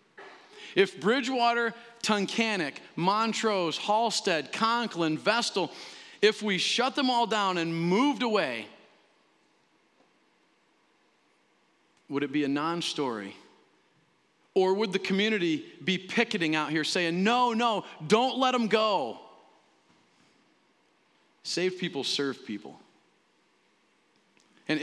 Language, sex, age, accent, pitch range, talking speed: English, male, 40-59, American, 175-220 Hz, 100 wpm